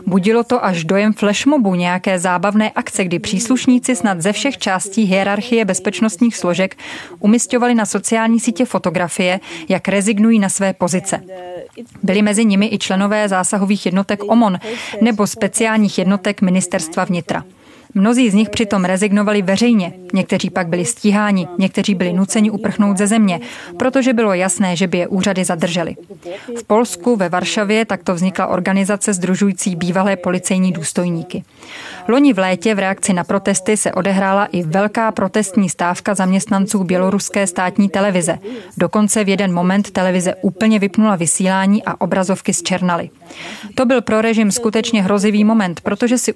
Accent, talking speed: native, 145 wpm